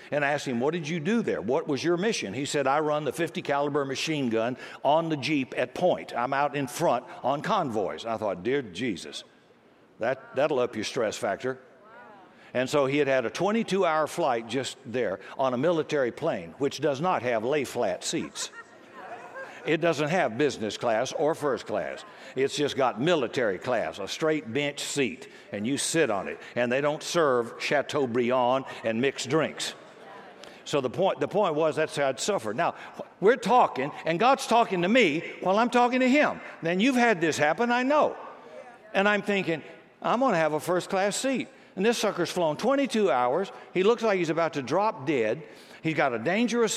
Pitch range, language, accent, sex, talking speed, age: 140-195 Hz, English, American, male, 195 wpm, 60-79